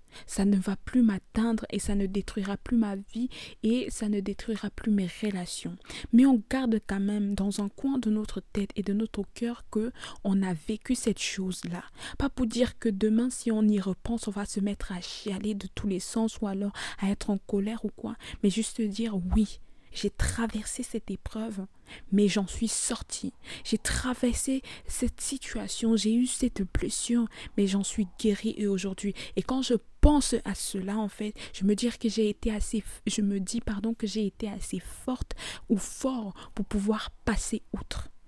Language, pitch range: French, 200-230 Hz